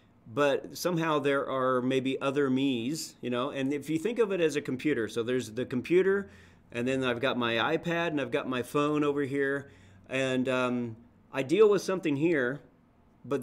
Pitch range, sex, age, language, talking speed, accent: 120-150 Hz, male, 40-59, English, 190 wpm, American